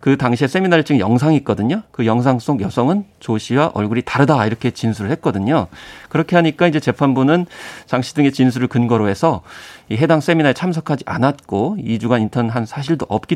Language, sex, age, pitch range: Korean, male, 40-59, 110-155 Hz